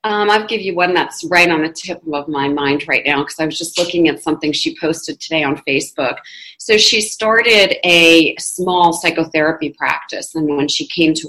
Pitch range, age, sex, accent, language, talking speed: 155-180 Hz, 40-59, female, American, English, 205 wpm